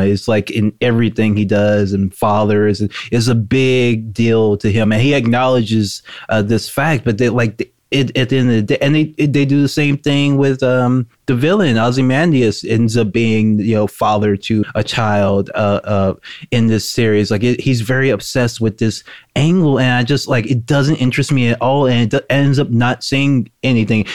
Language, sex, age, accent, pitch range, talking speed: English, male, 20-39, American, 110-130 Hz, 205 wpm